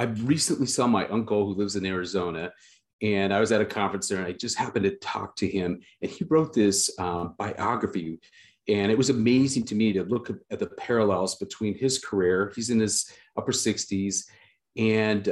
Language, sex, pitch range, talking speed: English, male, 100-120 Hz, 195 wpm